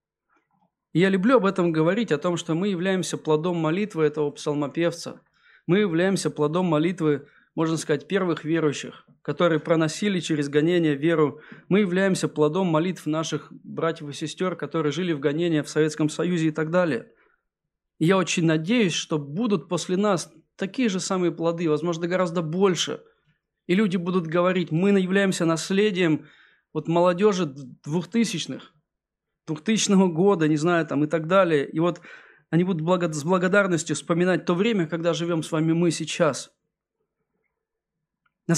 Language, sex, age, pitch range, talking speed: Russian, male, 20-39, 155-190 Hz, 145 wpm